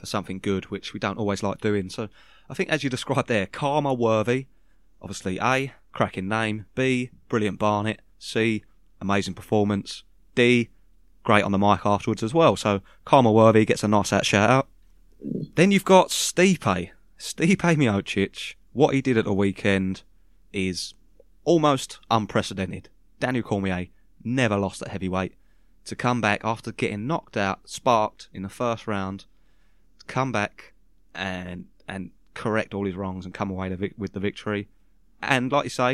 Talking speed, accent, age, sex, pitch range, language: 160 wpm, British, 20-39, male, 95-125 Hz, English